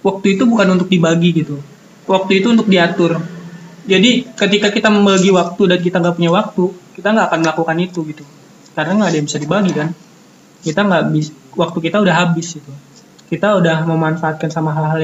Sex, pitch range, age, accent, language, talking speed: male, 160-195 Hz, 20-39, native, Indonesian, 180 wpm